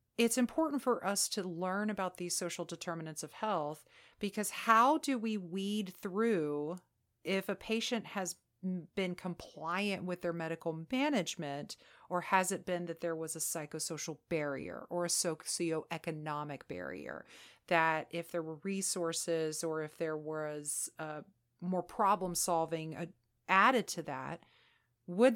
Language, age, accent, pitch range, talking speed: English, 40-59, American, 160-190 Hz, 140 wpm